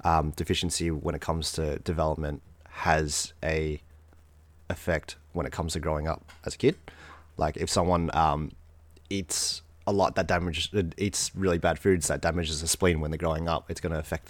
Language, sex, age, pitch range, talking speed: English, male, 30-49, 80-90 Hz, 185 wpm